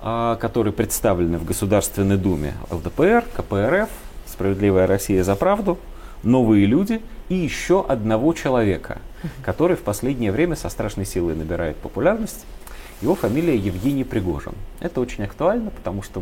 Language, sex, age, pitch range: Russian, male, 30-49, 95-130 Hz